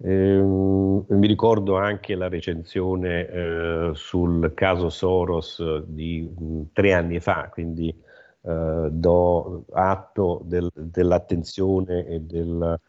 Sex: male